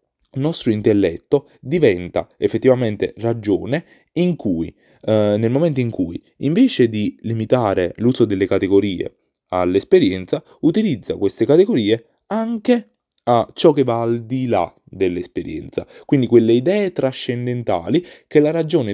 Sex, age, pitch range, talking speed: male, 20-39, 105-150 Hz, 125 wpm